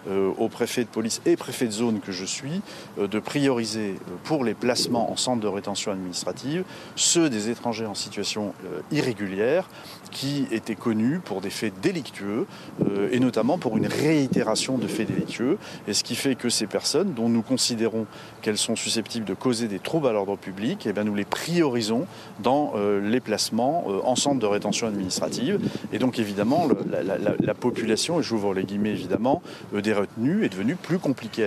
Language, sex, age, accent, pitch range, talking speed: French, male, 40-59, French, 100-120 Hz, 185 wpm